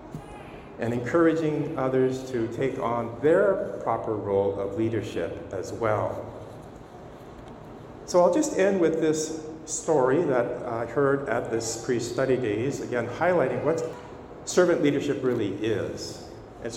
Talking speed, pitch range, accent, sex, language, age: 125 wpm, 120-160 Hz, American, male, English, 40-59